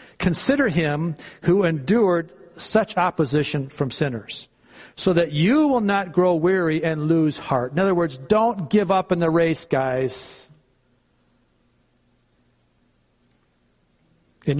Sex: male